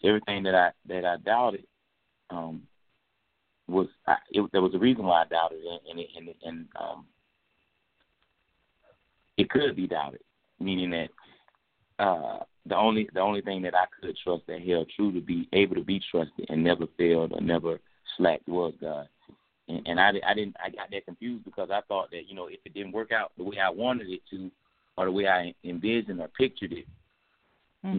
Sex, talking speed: male, 195 wpm